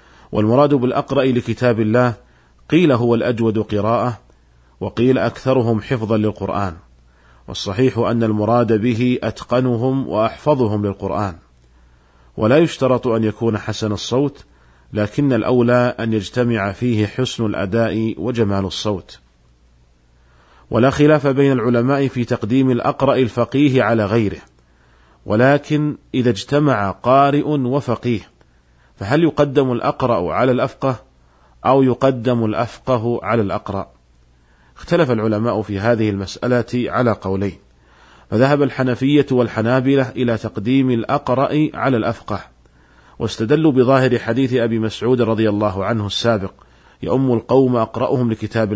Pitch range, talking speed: 100-130 Hz, 105 wpm